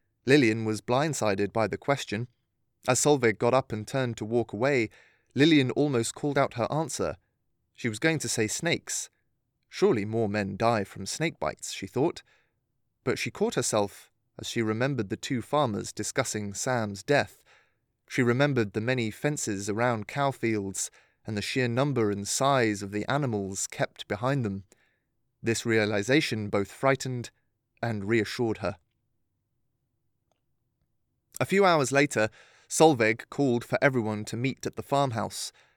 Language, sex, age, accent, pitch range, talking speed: English, male, 30-49, British, 110-130 Hz, 150 wpm